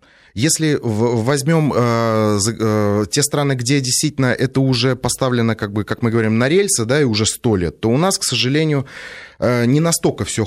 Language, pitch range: Russian, 110-145 Hz